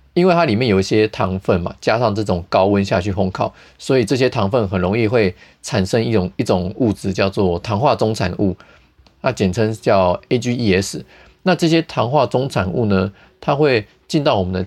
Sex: male